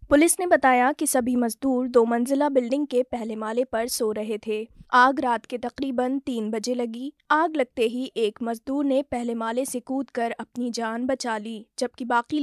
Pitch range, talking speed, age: 225-260 Hz, 190 wpm, 20-39